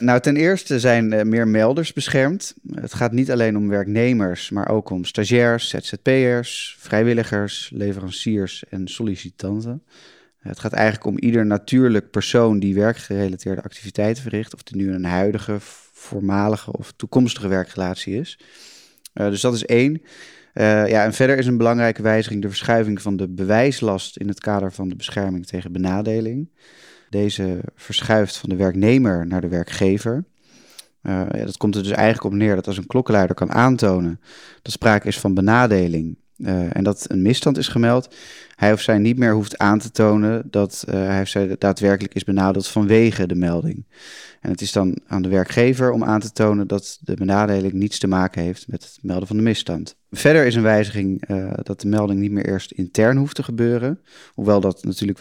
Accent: Dutch